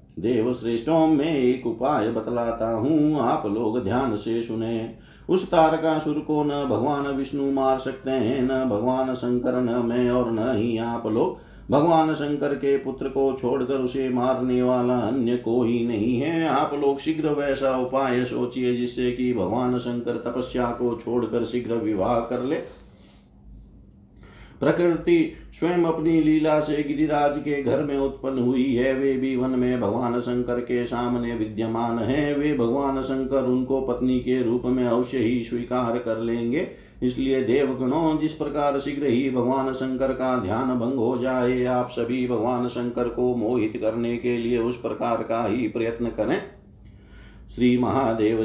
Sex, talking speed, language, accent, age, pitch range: male, 155 wpm, Hindi, native, 50-69, 115-135 Hz